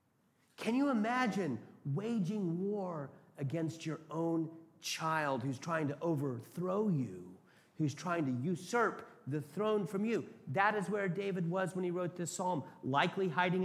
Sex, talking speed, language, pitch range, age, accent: male, 150 wpm, English, 150-195 Hz, 40-59, American